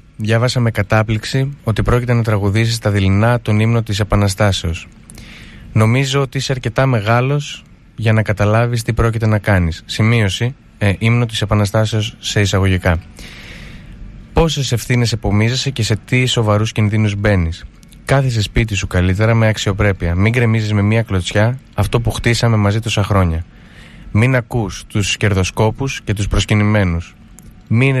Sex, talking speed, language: male, 140 wpm, Greek